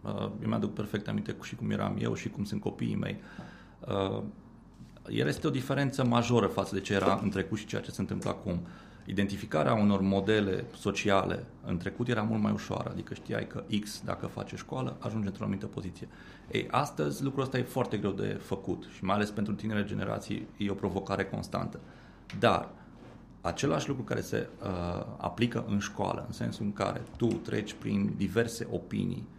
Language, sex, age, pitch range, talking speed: Romanian, male, 30-49, 95-115 Hz, 180 wpm